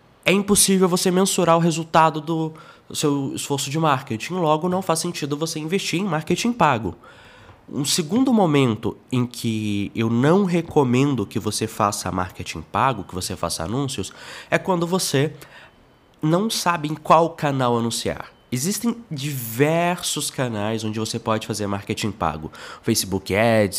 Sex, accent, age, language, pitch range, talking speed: male, Brazilian, 20-39, Portuguese, 105-165 Hz, 145 wpm